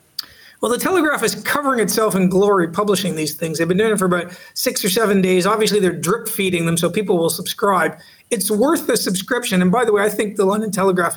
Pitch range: 185-220 Hz